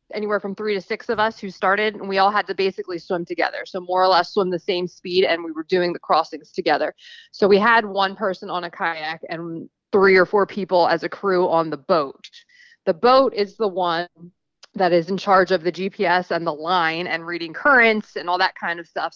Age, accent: 20-39, American